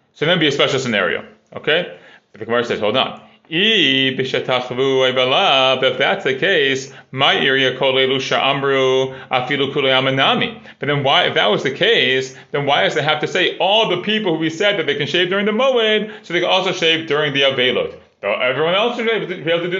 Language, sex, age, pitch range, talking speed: English, male, 30-49, 135-200 Hz, 200 wpm